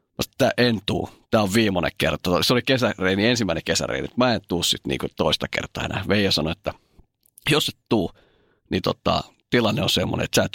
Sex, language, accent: male, Finnish, native